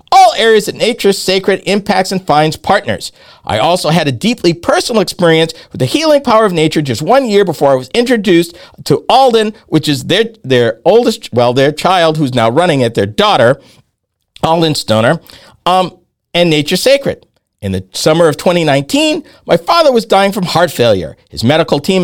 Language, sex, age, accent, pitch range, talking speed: English, male, 50-69, American, 155-235 Hz, 180 wpm